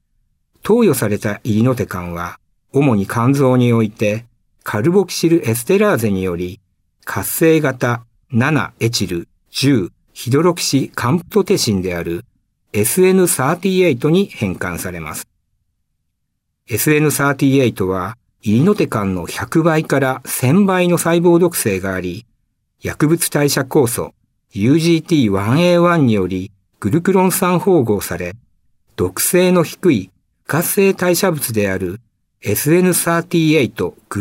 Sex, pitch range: male, 100-160 Hz